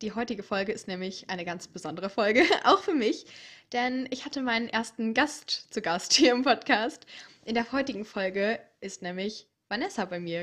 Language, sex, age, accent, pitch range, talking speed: German, female, 20-39, German, 180-240 Hz, 185 wpm